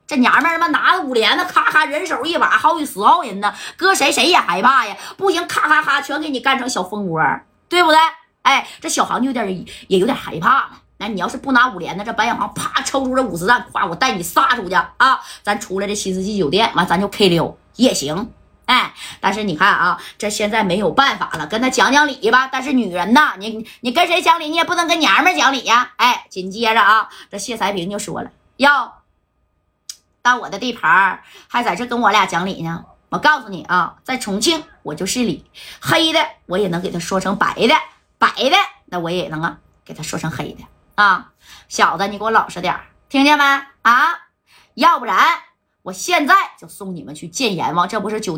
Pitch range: 190-290 Hz